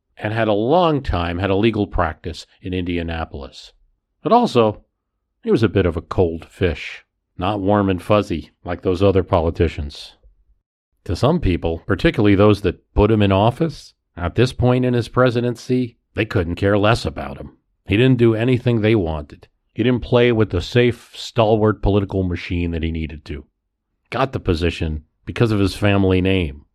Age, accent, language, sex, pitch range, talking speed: 40-59, American, English, male, 90-115 Hz, 175 wpm